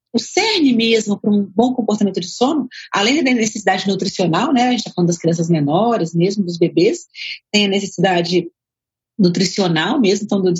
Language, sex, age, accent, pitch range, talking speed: Portuguese, female, 40-59, Brazilian, 195-245 Hz, 175 wpm